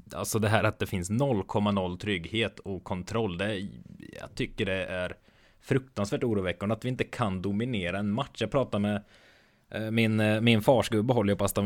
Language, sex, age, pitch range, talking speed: Swedish, male, 20-39, 95-110 Hz, 175 wpm